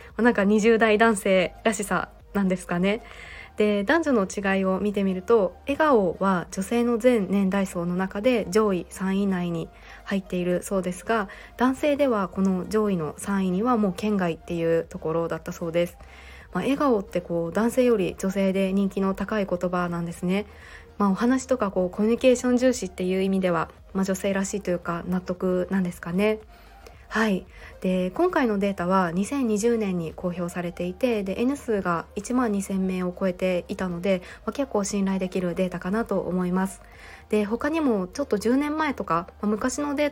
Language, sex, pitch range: Japanese, female, 185-225 Hz